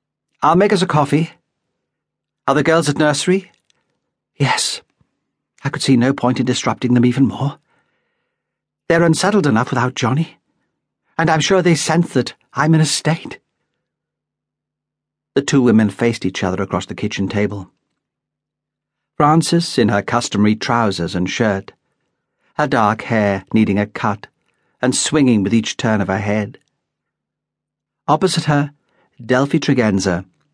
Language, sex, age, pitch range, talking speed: English, male, 60-79, 110-155 Hz, 140 wpm